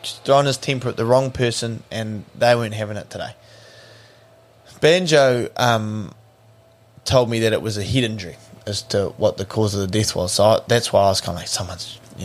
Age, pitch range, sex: 20-39, 105-120 Hz, male